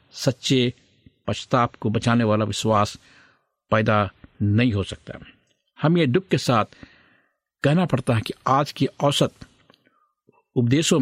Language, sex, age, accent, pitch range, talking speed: Hindi, male, 50-69, native, 105-140 Hz, 125 wpm